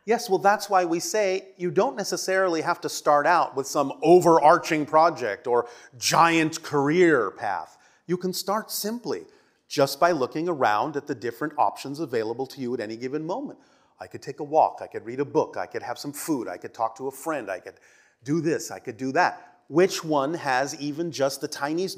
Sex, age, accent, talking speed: male, 30-49, American, 205 wpm